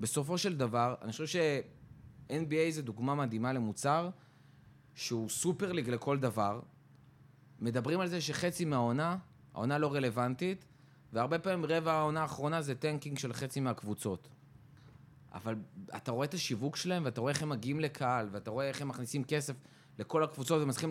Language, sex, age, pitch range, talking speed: Hebrew, male, 20-39, 135-180 Hz, 150 wpm